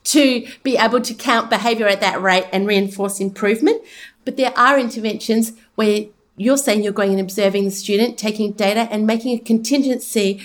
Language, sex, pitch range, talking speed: English, female, 225-300 Hz, 180 wpm